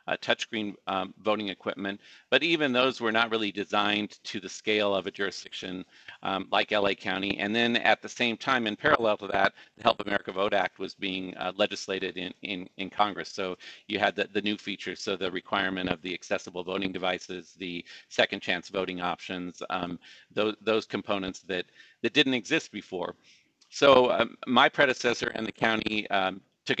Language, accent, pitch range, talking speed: English, American, 95-115 Hz, 190 wpm